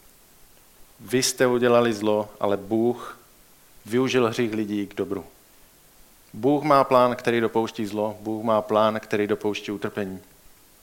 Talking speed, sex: 125 wpm, male